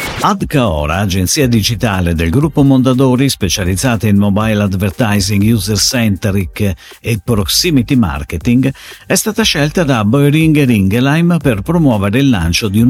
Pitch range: 100-150 Hz